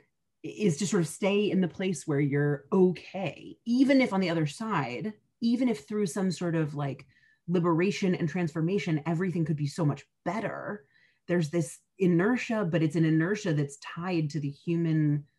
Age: 30-49